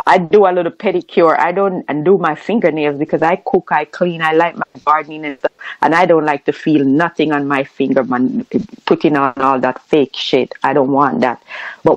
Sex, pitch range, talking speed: female, 160-220 Hz, 215 wpm